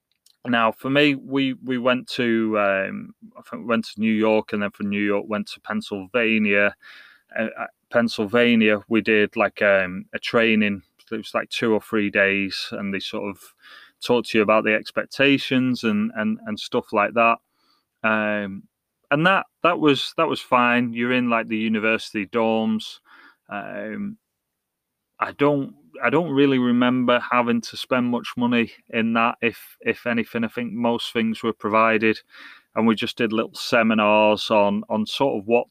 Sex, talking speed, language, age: male, 170 wpm, English, 30-49